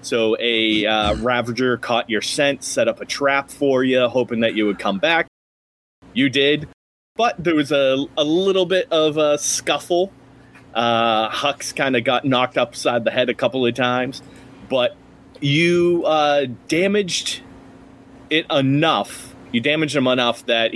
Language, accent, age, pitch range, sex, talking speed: English, American, 30-49, 115-140 Hz, male, 160 wpm